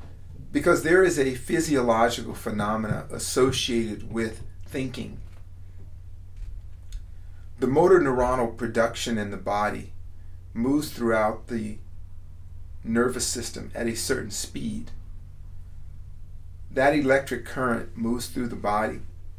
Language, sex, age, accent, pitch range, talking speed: English, male, 40-59, American, 90-125 Hz, 100 wpm